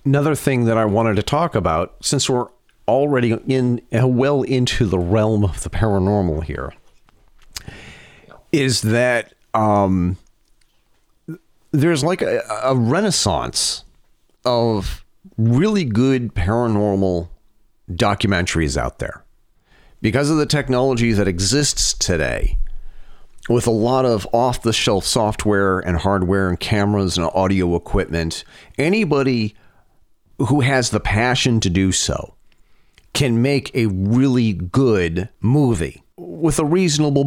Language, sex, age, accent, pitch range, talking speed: English, male, 40-59, American, 100-130 Hz, 115 wpm